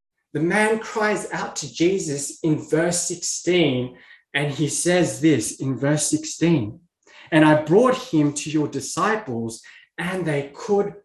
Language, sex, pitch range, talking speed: English, male, 130-185 Hz, 140 wpm